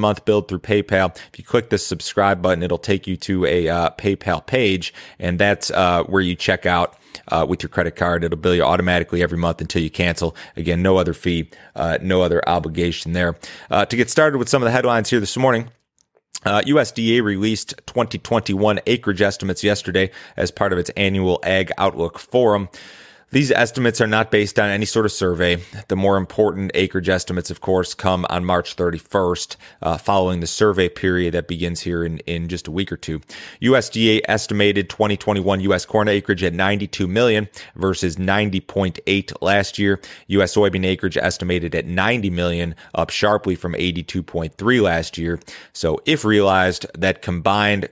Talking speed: 180 wpm